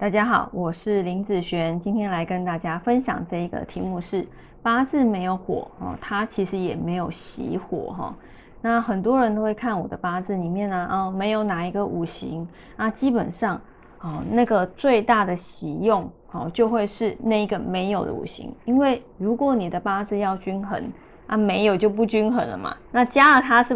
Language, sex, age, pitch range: Chinese, female, 20-39, 185-245 Hz